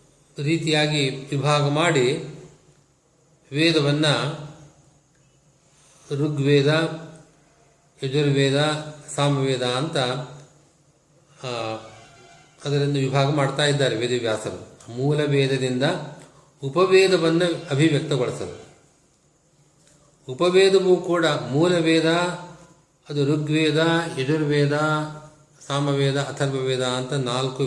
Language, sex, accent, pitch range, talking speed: Kannada, male, native, 140-160 Hz, 55 wpm